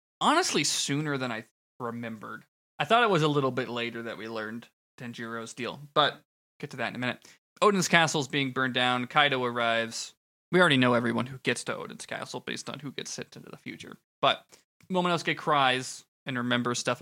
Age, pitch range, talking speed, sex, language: 20-39, 115-140 Hz, 200 wpm, male, English